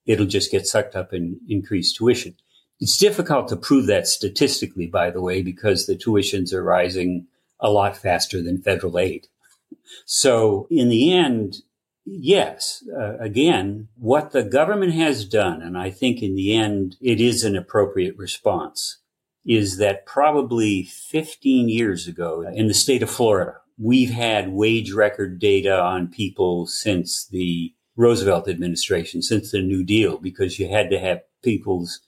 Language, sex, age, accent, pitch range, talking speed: English, male, 50-69, American, 95-120 Hz, 155 wpm